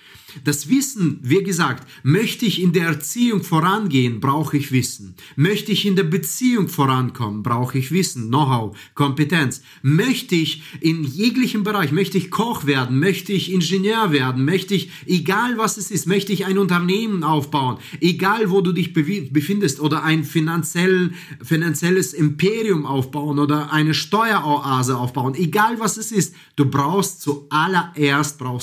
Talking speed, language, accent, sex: 145 wpm, German, German, male